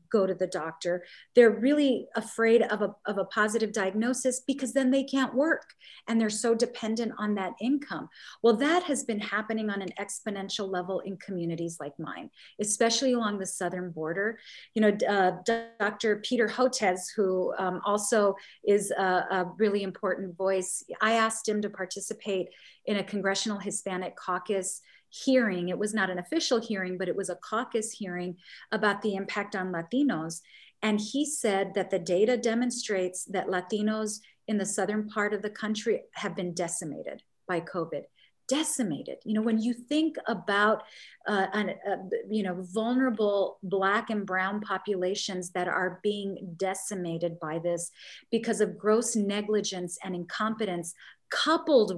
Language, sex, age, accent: English, female, 40-59, American